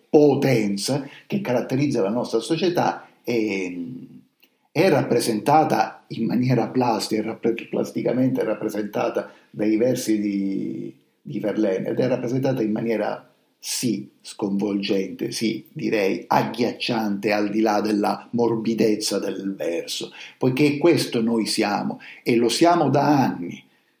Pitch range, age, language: 105-130 Hz, 50-69, Italian